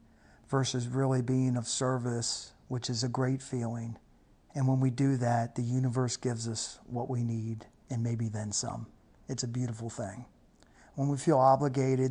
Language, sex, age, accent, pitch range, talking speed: English, male, 50-69, American, 120-135 Hz, 170 wpm